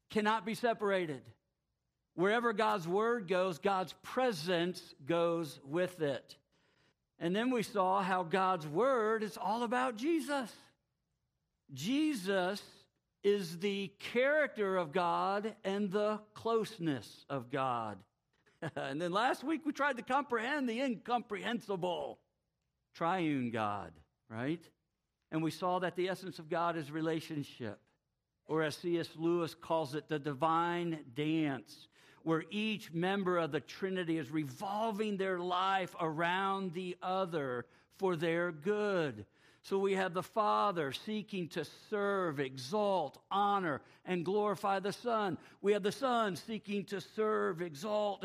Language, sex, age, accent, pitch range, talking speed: English, male, 60-79, American, 160-215 Hz, 130 wpm